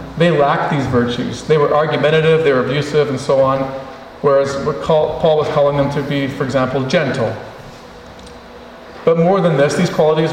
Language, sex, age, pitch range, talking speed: English, male, 40-59, 135-160 Hz, 170 wpm